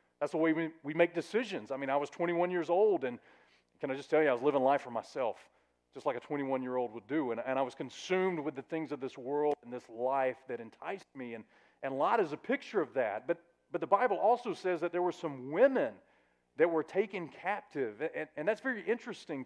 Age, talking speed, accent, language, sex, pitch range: 40-59, 235 wpm, American, English, male, 140-195 Hz